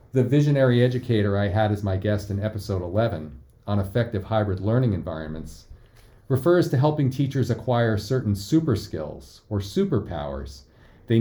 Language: English